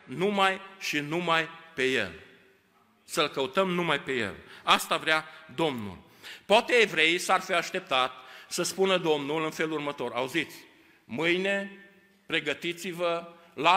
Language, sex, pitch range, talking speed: Romanian, male, 145-195 Hz, 120 wpm